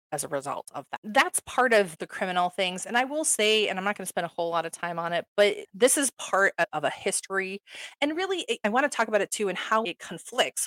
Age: 30-49